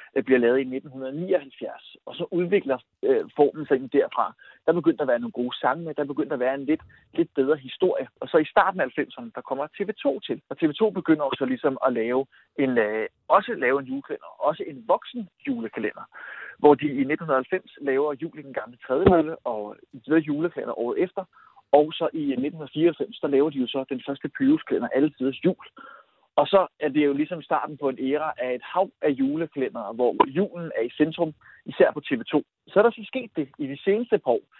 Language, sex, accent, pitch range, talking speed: Danish, male, native, 135-175 Hz, 200 wpm